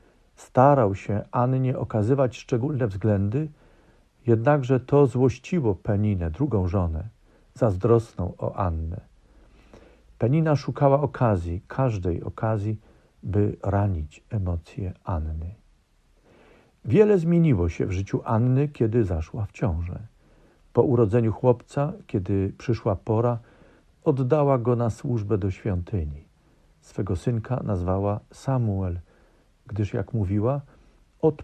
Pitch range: 95-125 Hz